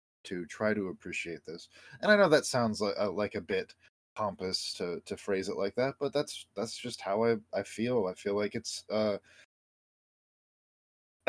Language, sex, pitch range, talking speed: English, male, 100-125 Hz, 185 wpm